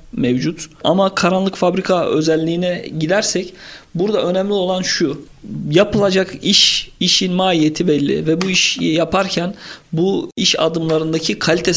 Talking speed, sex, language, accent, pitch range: 115 wpm, male, Turkish, native, 155-190 Hz